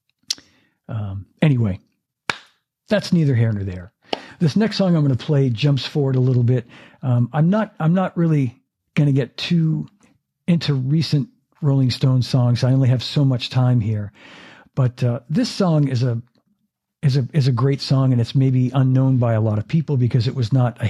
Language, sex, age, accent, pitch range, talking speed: English, male, 50-69, American, 120-140 Hz, 190 wpm